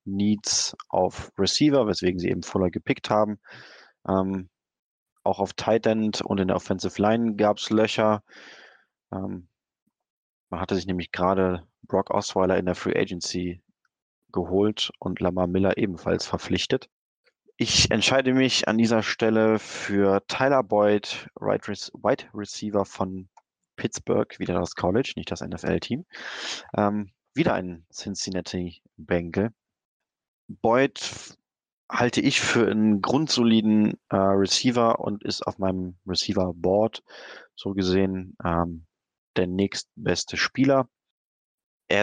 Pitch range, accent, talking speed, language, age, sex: 90-110 Hz, German, 120 wpm, German, 20-39, male